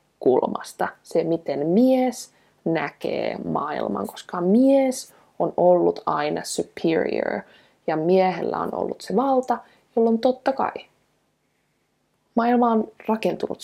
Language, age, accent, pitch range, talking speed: Finnish, 20-39, native, 175-225 Hz, 105 wpm